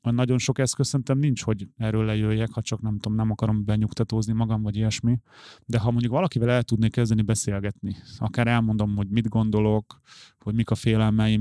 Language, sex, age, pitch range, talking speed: Hungarian, male, 30-49, 105-115 Hz, 185 wpm